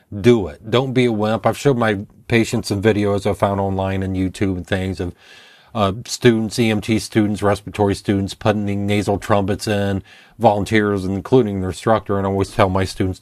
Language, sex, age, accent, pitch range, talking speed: English, male, 40-59, American, 100-125 Hz, 180 wpm